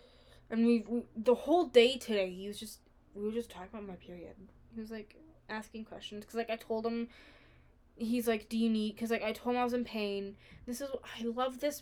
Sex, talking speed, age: female, 230 wpm, 10-29